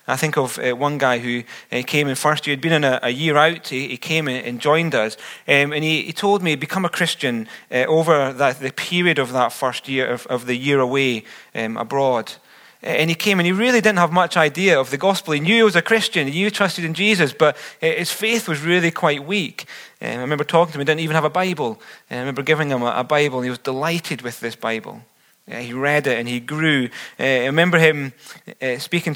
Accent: British